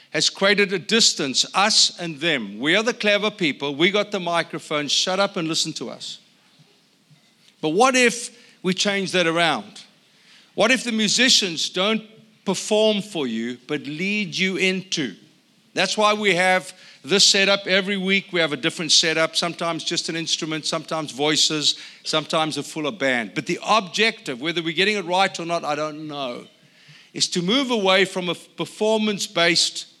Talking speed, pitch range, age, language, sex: 170 wpm, 155-205 Hz, 50-69, English, male